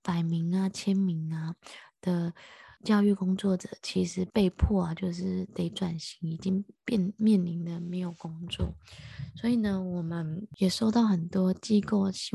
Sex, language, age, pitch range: female, Chinese, 20-39, 175-200 Hz